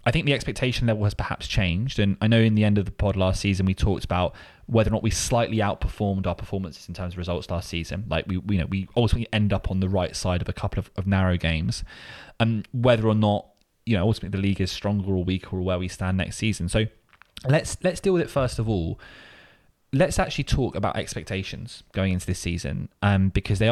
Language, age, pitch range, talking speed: English, 20-39, 90-110 Hz, 240 wpm